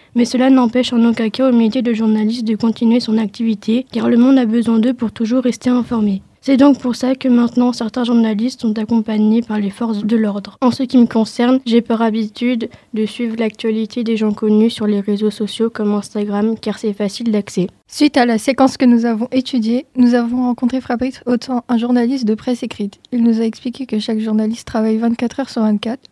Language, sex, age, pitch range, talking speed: French, female, 20-39, 220-245 Hz, 215 wpm